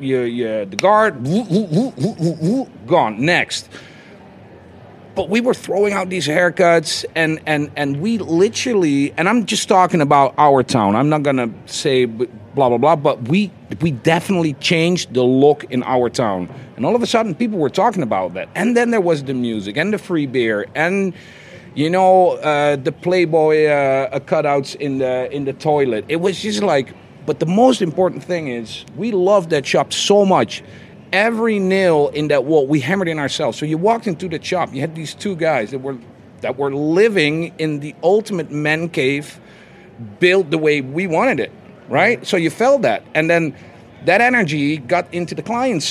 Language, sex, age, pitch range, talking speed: English, male, 40-59, 145-195 Hz, 190 wpm